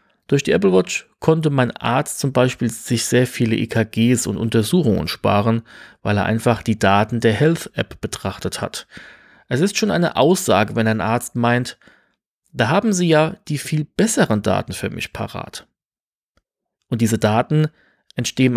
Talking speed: 160 wpm